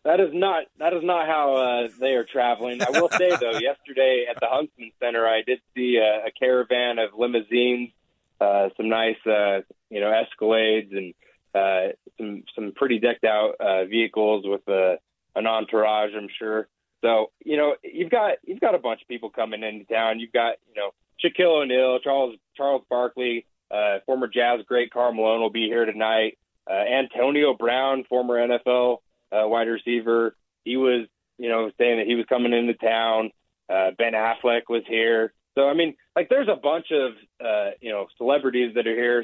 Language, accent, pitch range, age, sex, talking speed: English, American, 110-130 Hz, 20-39, male, 185 wpm